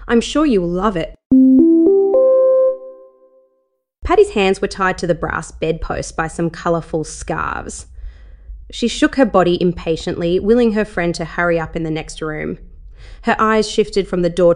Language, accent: English, Australian